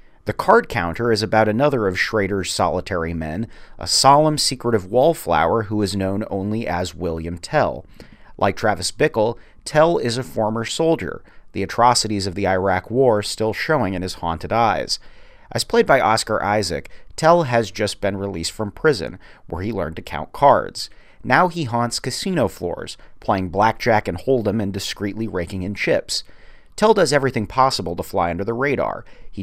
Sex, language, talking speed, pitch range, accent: male, English, 170 wpm, 95-125 Hz, American